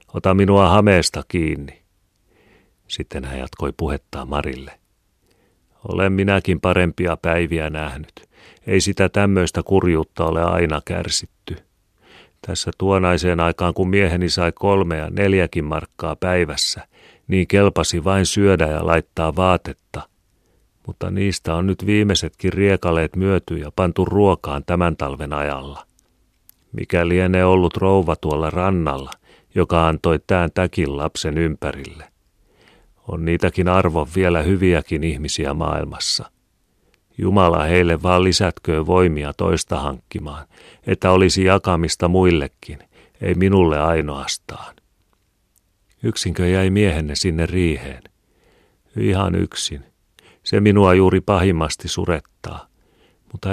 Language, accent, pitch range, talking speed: Finnish, native, 80-95 Hz, 110 wpm